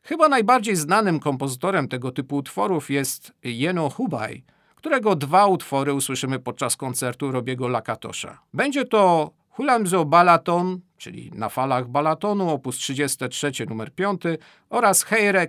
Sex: male